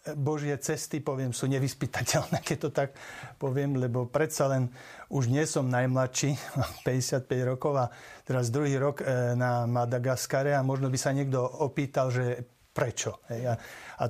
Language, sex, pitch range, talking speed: Slovak, male, 130-150 Hz, 140 wpm